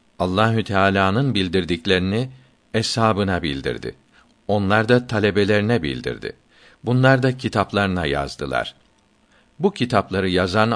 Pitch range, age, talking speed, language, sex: 95-120 Hz, 60-79, 90 wpm, Turkish, male